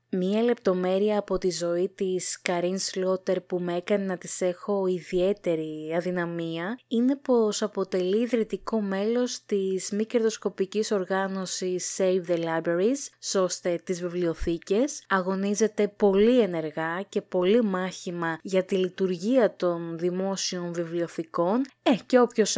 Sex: female